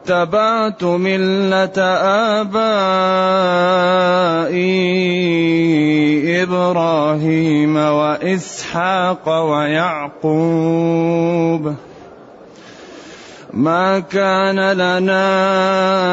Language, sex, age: Arabic, male, 30-49